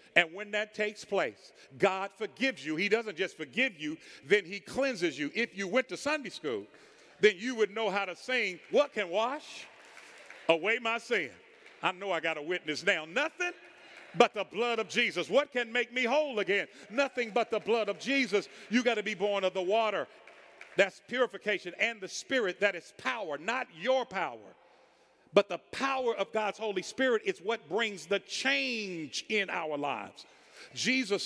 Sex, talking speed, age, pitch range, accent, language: male, 185 wpm, 50-69, 185-250 Hz, American, English